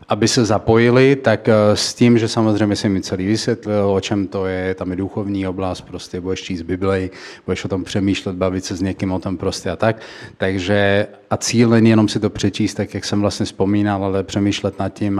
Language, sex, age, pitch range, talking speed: Slovak, male, 30-49, 100-110 Hz, 215 wpm